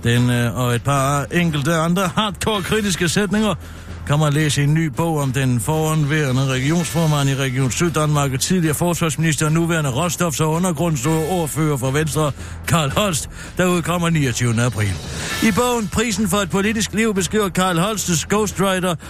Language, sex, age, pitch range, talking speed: Danish, male, 60-79, 130-180 Hz, 155 wpm